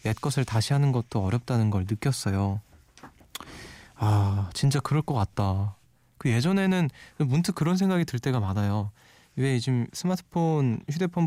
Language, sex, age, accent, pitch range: Korean, male, 20-39, native, 110-150 Hz